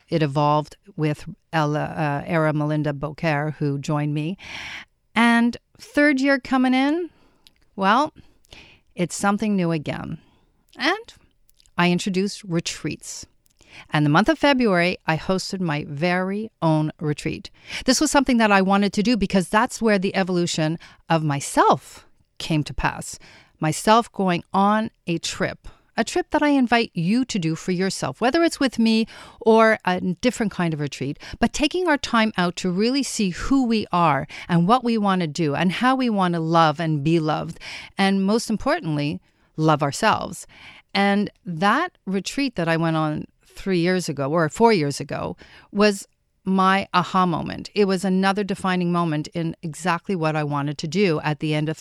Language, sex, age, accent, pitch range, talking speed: English, female, 50-69, American, 155-205 Hz, 165 wpm